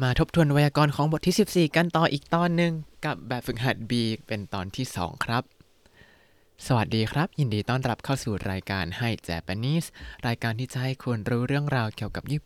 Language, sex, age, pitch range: Thai, male, 20-39, 110-145 Hz